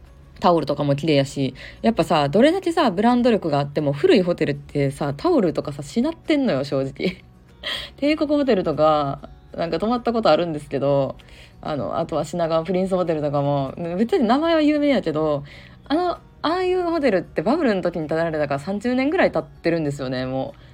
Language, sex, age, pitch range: Japanese, female, 20-39, 145-225 Hz